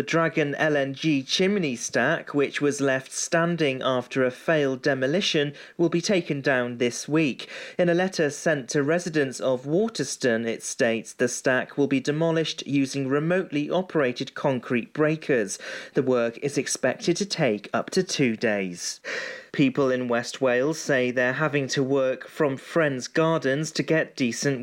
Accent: British